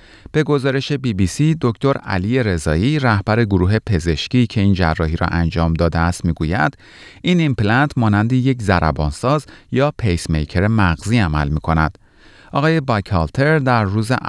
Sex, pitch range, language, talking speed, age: male, 85-135 Hz, Persian, 145 wpm, 30-49